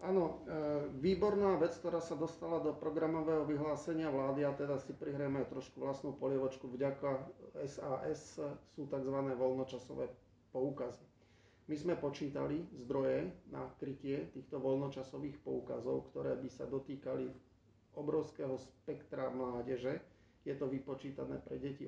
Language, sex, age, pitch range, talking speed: Slovak, male, 40-59, 130-155 Hz, 120 wpm